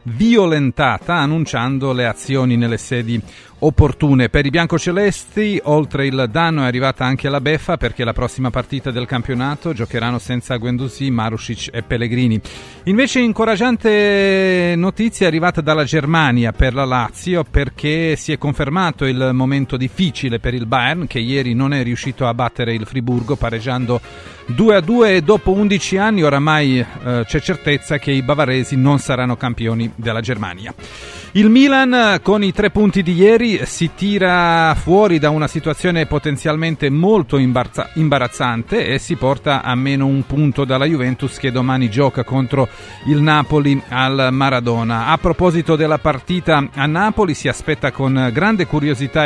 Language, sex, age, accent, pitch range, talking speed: Italian, male, 40-59, native, 125-170 Hz, 150 wpm